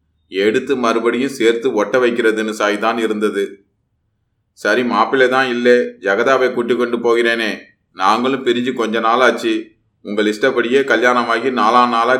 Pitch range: 105-120 Hz